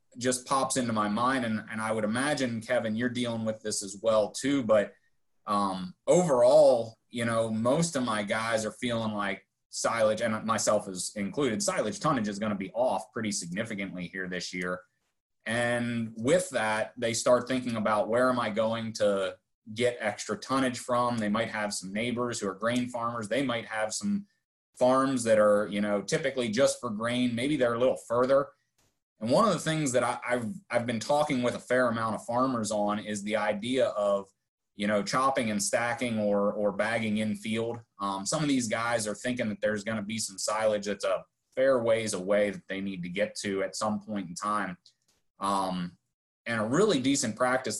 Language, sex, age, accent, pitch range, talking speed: English, male, 30-49, American, 105-125 Hz, 195 wpm